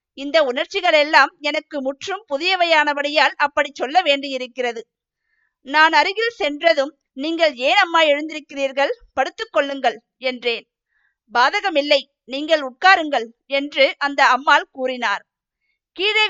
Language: Tamil